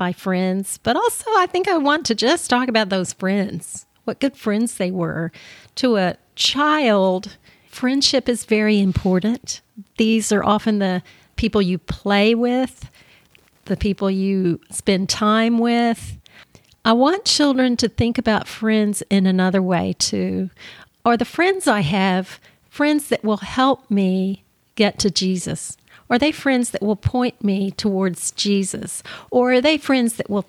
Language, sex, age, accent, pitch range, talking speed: English, female, 40-59, American, 190-240 Hz, 155 wpm